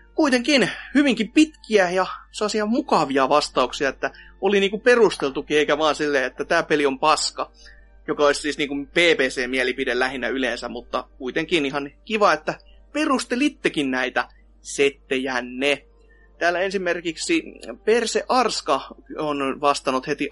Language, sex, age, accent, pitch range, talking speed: Finnish, male, 30-49, native, 150-230 Hz, 130 wpm